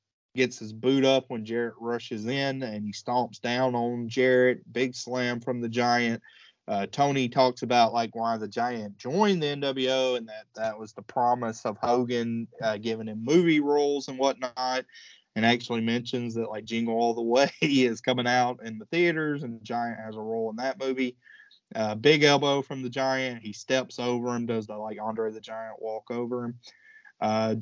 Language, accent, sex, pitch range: English, American, male, 115-130 Hz